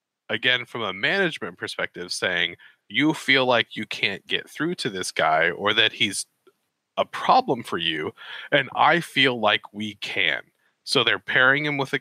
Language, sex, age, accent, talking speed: English, male, 30-49, American, 175 wpm